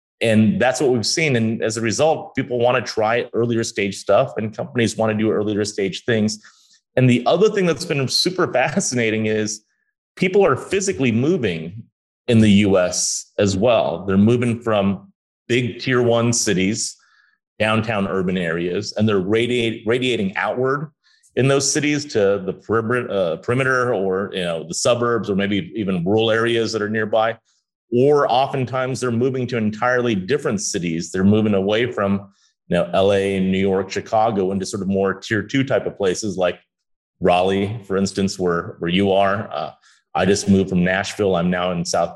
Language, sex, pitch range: English, male, 100-125 Hz